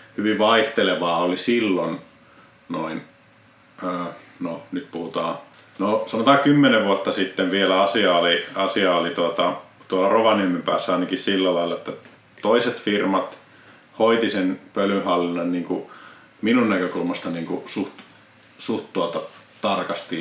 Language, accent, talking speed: Finnish, native, 125 wpm